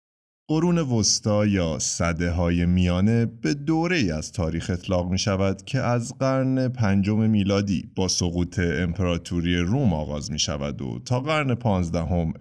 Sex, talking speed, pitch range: male, 140 wpm, 85-120 Hz